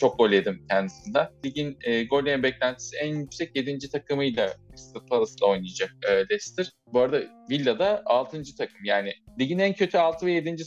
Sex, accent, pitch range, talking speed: male, native, 110-160 Hz, 155 wpm